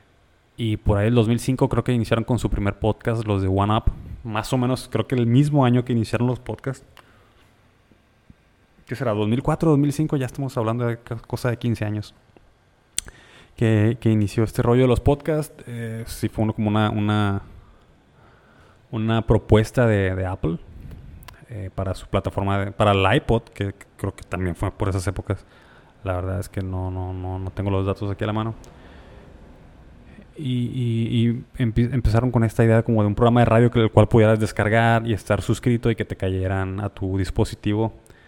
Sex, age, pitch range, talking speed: male, 20-39, 100-120 Hz, 175 wpm